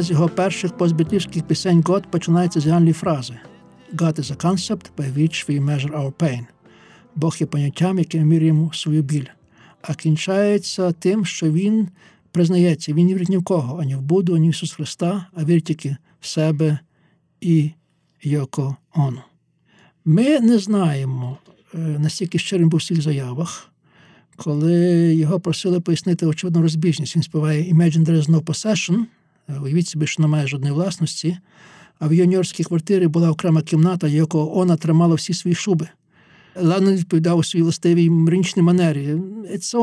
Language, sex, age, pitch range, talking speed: Ukrainian, male, 60-79, 155-180 Hz, 145 wpm